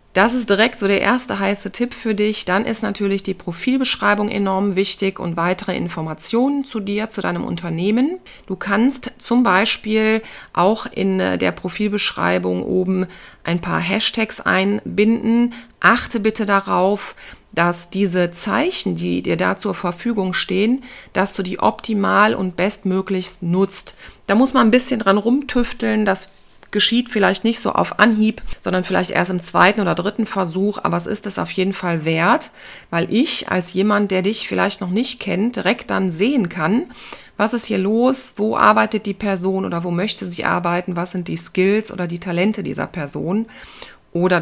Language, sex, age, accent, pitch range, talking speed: German, female, 40-59, German, 185-225 Hz, 170 wpm